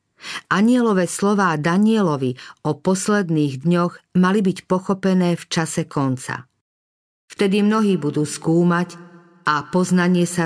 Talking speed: 110 wpm